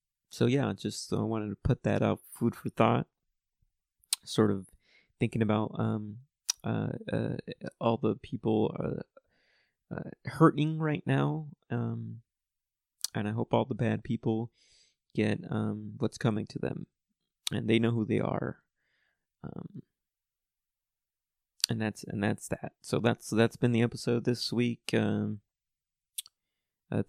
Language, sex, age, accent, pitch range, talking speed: English, male, 30-49, American, 110-125 Hz, 140 wpm